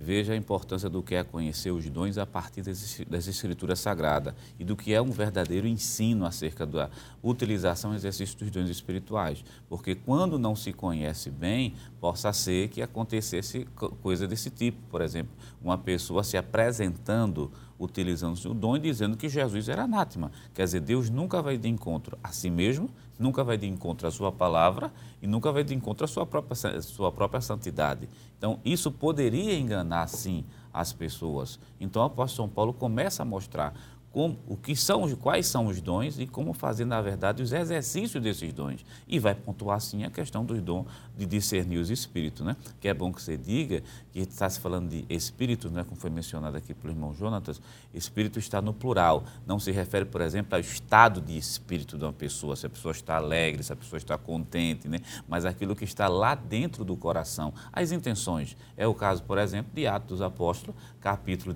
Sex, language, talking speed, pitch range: male, Portuguese, 190 wpm, 90-120 Hz